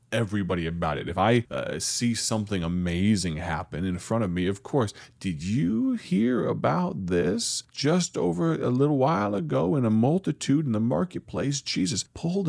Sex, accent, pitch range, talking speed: male, American, 95-155 Hz, 170 wpm